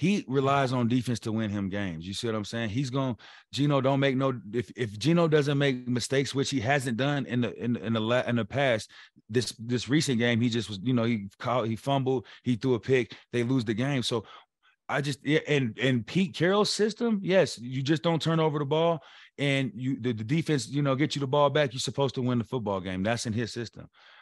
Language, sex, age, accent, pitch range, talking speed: English, male, 30-49, American, 125-155 Hz, 245 wpm